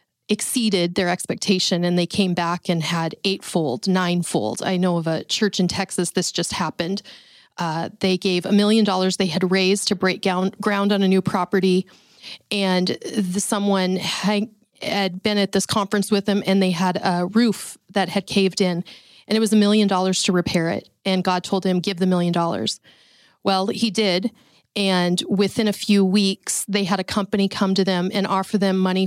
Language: English